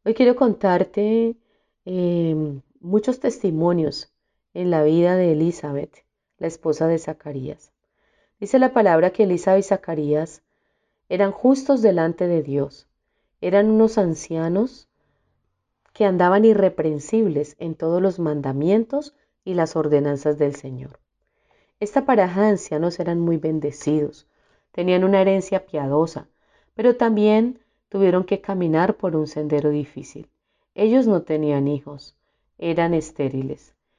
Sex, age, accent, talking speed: female, 30-49, Colombian, 120 wpm